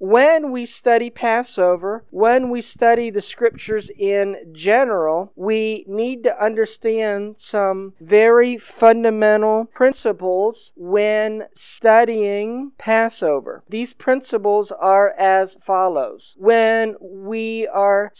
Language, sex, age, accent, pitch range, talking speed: English, male, 50-69, American, 205-245 Hz, 100 wpm